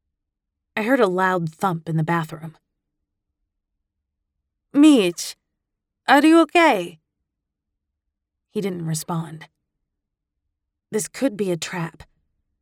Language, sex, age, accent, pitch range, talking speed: English, female, 30-49, American, 155-195 Hz, 95 wpm